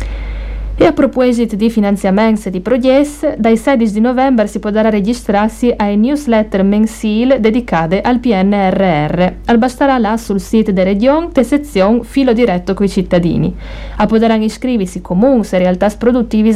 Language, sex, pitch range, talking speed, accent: Italian, female, 190-245 Hz, 150 wpm, native